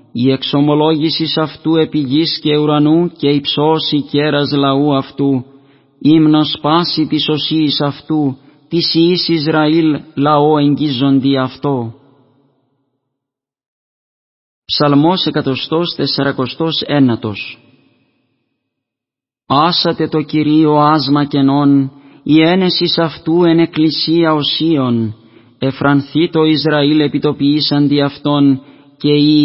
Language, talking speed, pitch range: Greek, 85 wpm, 140-155 Hz